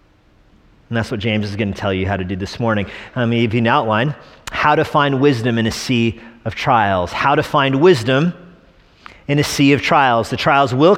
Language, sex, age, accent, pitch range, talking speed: English, male, 40-59, American, 120-165 Hz, 225 wpm